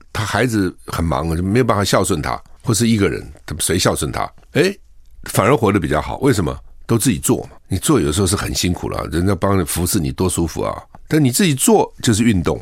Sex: male